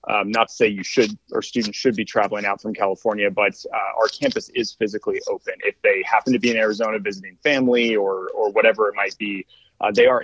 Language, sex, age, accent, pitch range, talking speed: English, male, 30-49, American, 100-125 Hz, 230 wpm